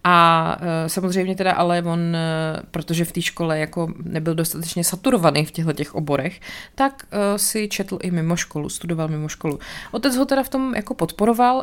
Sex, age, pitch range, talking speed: female, 20-39, 165-205 Hz, 155 wpm